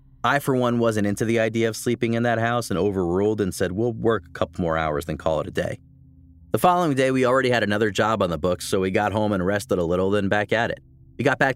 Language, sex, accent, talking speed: English, male, American, 275 wpm